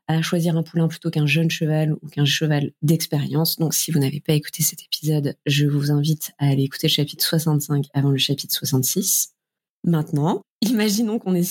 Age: 20-39